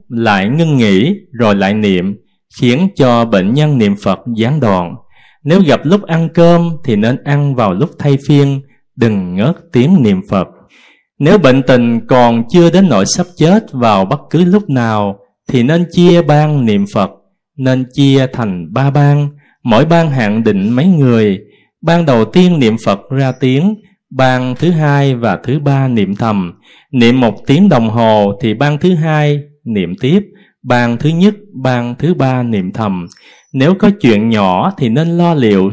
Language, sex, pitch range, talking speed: Vietnamese, male, 115-165 Hz, 175 wpm